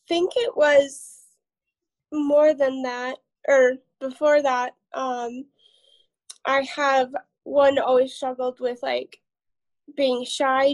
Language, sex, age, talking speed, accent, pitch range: English, female, 20-39, 105 wpm, American, 250-295 Hz